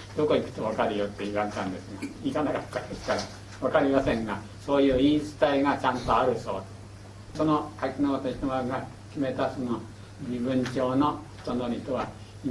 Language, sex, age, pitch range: Japanese, male, 60-79, 105-140 Hz